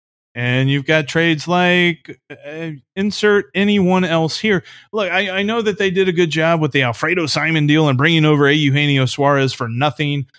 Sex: male